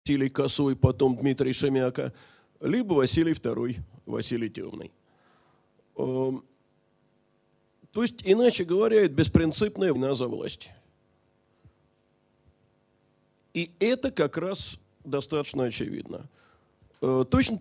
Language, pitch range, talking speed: Russian, 120-175 Hz, 90 wpm